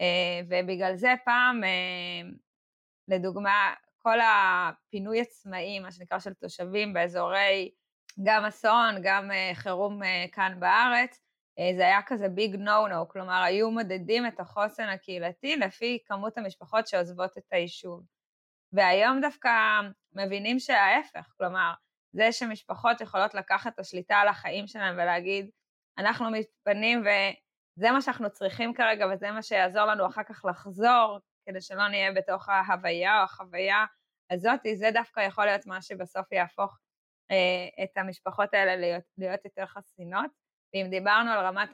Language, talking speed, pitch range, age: Hebrew, 135 wpm, 185-215 Hz, 20-39